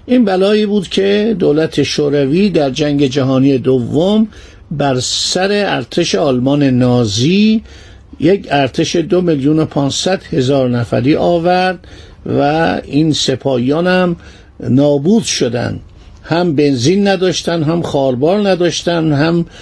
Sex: male